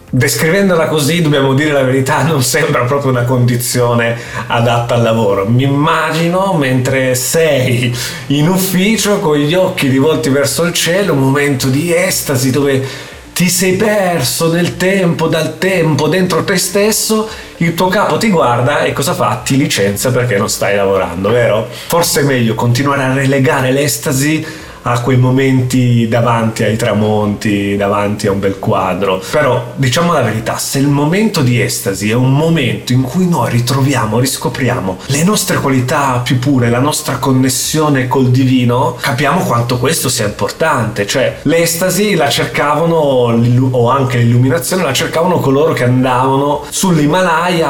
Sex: male